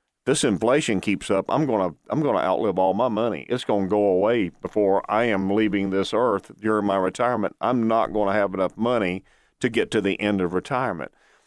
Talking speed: 220 wpm